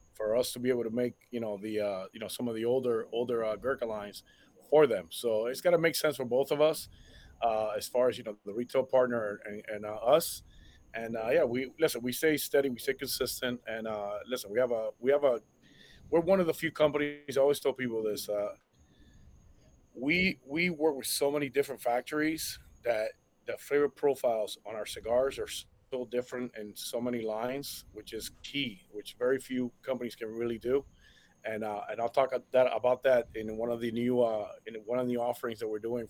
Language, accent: English, American